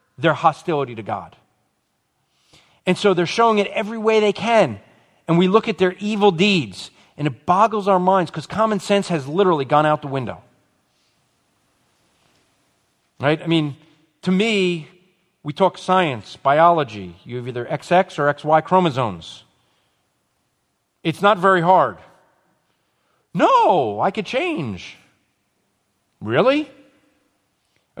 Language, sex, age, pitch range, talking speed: English, male, 40-59, 145-200 Hz, 130 wpm